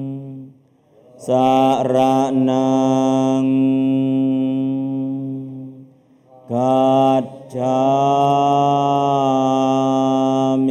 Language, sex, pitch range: Thai, male, 130-135 Hz